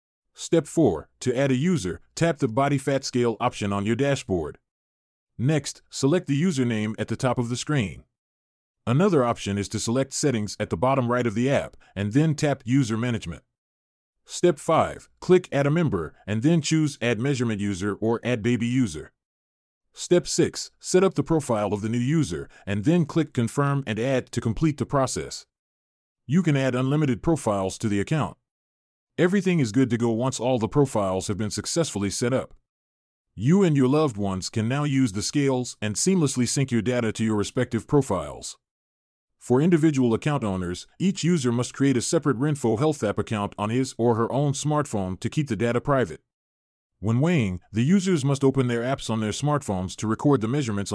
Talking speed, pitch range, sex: 190 wpm, 105-145 Hz, male